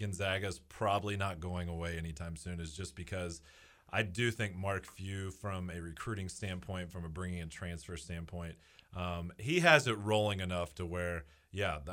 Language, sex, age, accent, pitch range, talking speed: English, male, 30-49, American, 85-105 Hz, 170 wpm